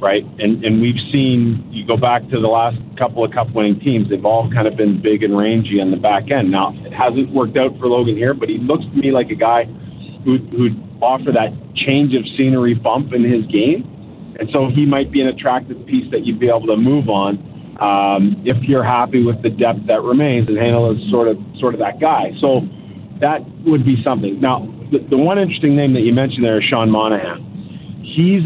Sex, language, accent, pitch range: male, English, American, 115-135 Hz